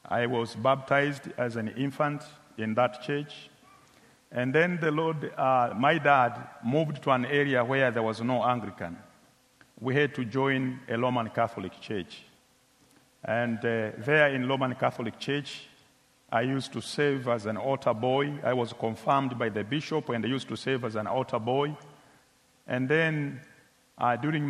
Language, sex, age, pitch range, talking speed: English, male, 50-69, 120-140 Hz, 165 wpm